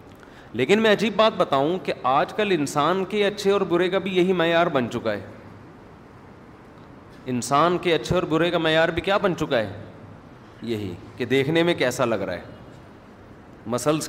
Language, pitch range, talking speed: Urdu, 125-165 Hz, 175 wpm